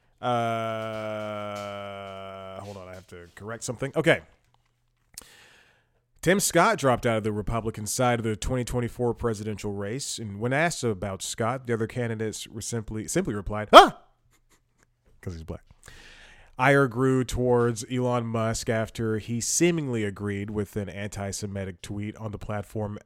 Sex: male